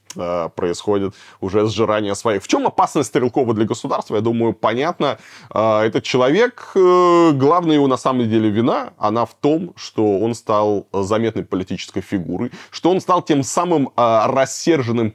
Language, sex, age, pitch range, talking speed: Russian, male, 20-39, 105-145 Hz, 145 wpm